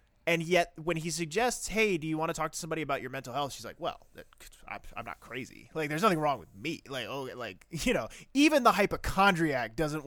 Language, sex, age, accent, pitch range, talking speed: English, male, 20-39, American, 120-170 Hz, 225 wpm